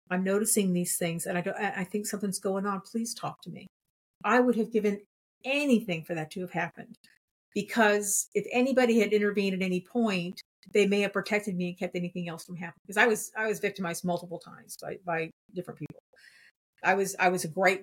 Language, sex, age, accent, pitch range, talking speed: English, female, 50-69, American, 180-215 Hz, 210 wpm